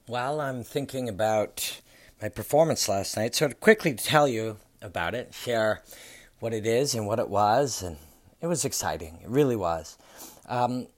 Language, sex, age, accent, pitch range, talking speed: English, male, 40-59, American, 105-135 Hz, 170 wpm